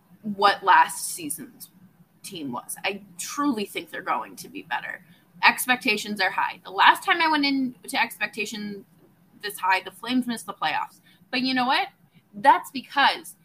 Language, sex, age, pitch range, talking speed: English, female, 20-39, 180-250 Hz, 165 wpm